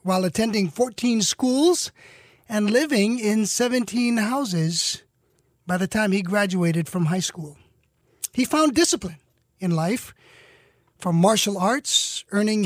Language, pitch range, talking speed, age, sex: English, 160-215 Hz, 125 wpm, 40-59, male